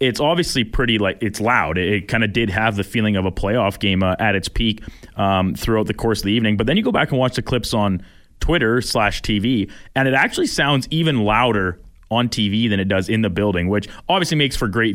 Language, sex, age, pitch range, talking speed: English, male, 20-39, 100-125 Hz, 240 wpm